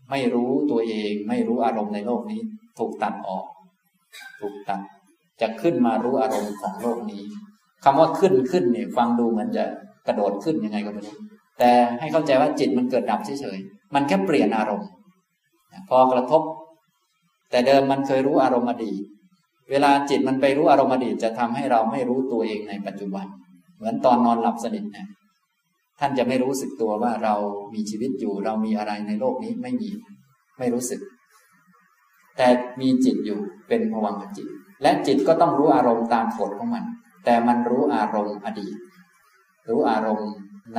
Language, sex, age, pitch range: Thai, male, 20-39, 105-170 Hz